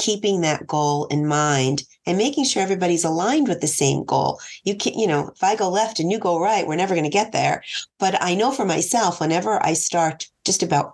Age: 40-59